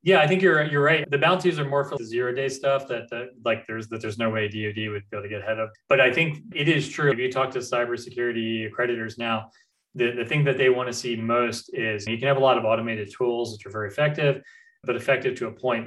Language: English